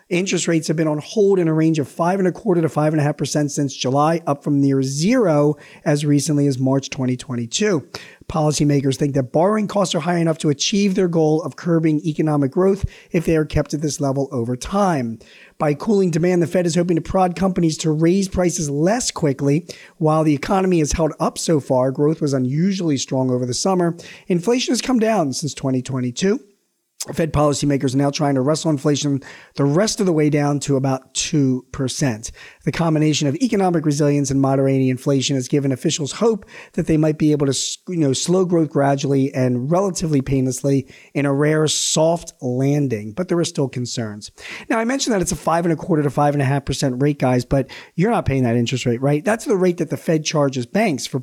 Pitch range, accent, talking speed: 140-175 Hz, American, 210 wpm